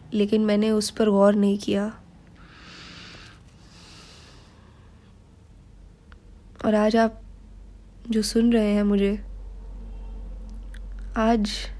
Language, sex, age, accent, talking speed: Hindi, female, 20-39, native, 80 wpm